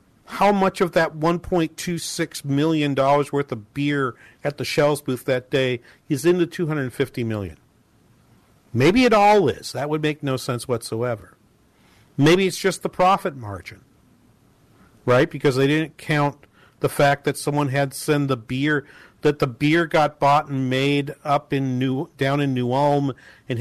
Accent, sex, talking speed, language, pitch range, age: American, male, 165 wpm, English, 125-150 Hz, 50-69